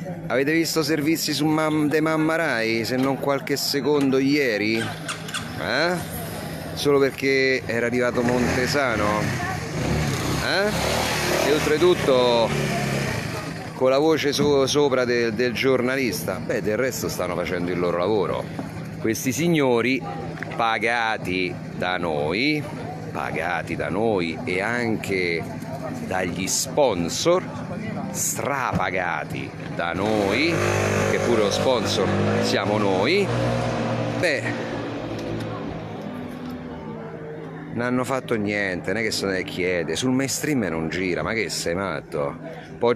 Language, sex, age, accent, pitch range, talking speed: Italian, male, 40-59, native, 110-145 Hz, 110 wpm